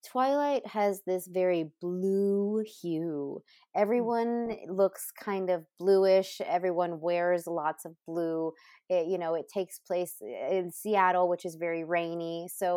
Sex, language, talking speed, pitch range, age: female, English, 130 wpm, 170-210 Hz, 20-39